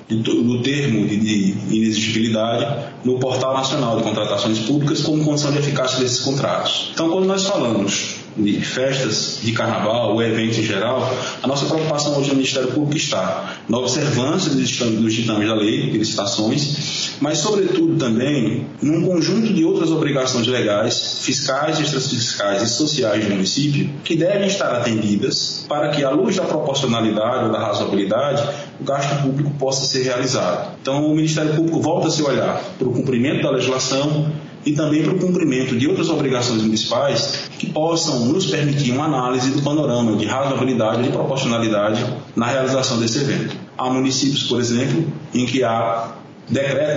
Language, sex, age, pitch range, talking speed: Portuguese, male, 20-39, 115-145 Hz, 160 wpm